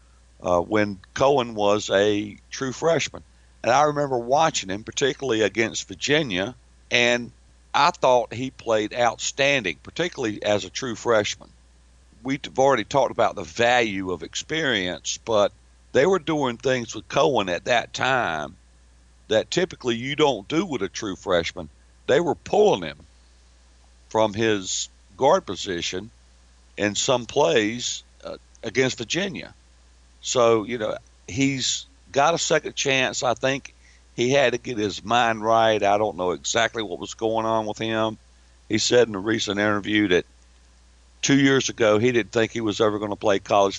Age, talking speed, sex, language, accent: 60-79, 155 wpm, male, English, American